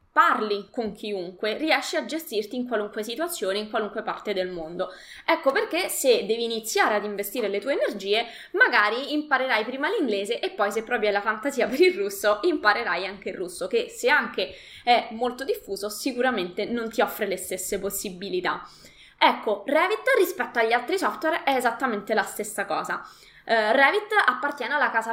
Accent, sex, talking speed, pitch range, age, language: native, female, 165 wpm, 210-300 Hz, 20-39, Italian